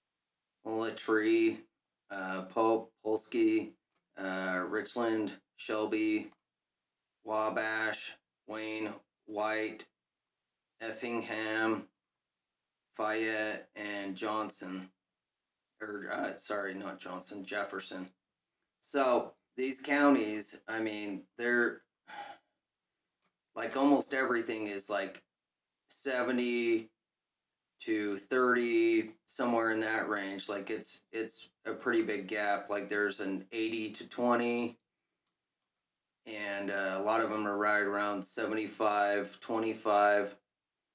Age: 30-49